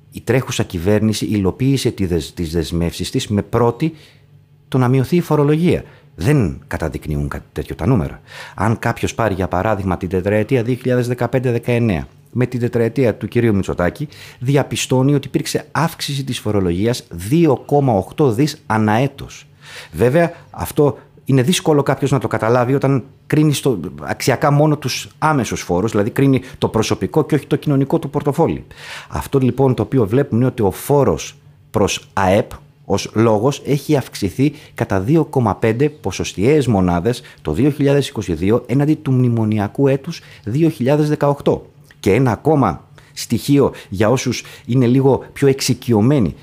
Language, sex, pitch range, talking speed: Greek, male, 105-145 Hz, 135 wpm